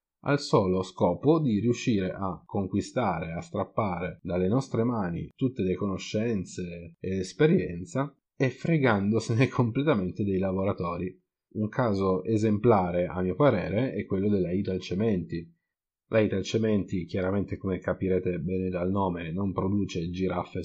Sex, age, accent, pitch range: male, 30-49, native, 90-120 Hz